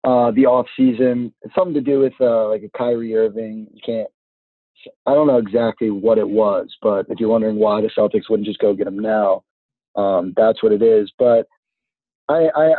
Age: 20-39